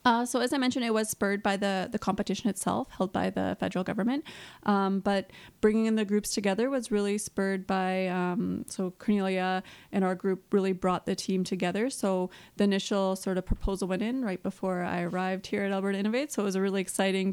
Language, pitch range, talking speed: English, 190-220 Hz, 215 wpm